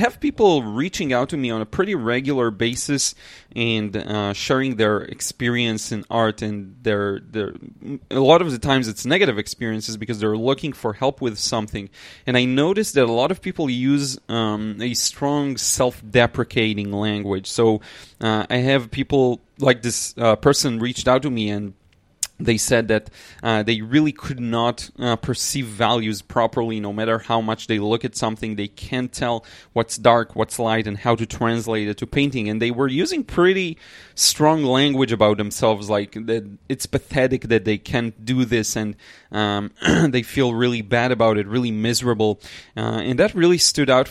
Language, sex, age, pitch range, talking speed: English, male, 20-39, 110-130 Hz, 180 wpm